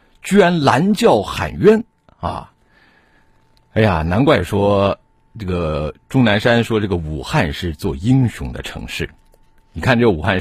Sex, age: male, 50-69